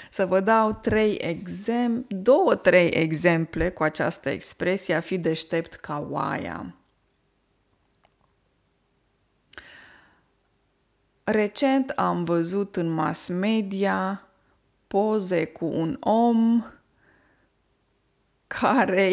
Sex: female